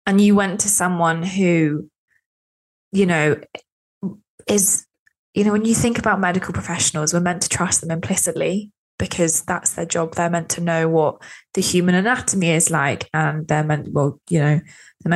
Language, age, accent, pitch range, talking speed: English, 20-39, British, 165-200 Hz, 175 wpm